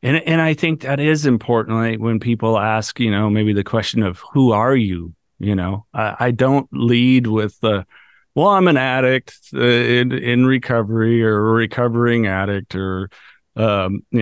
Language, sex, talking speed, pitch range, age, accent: English, male, 175 wpm, 110-135 Hz, 40-59, American